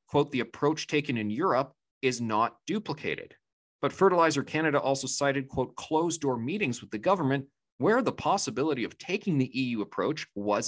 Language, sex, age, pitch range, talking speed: English, male, 40-59, 115-155 Hz, 170 wpm